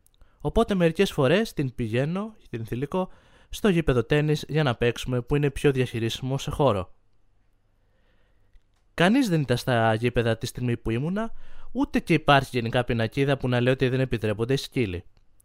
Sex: male